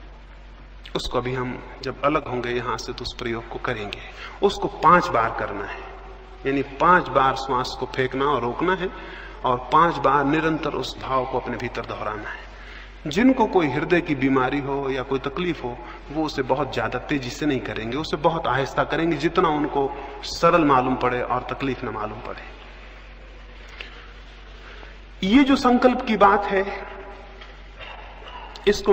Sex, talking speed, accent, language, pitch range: male, 160 wpm, native, Hindi, 130-185 Hz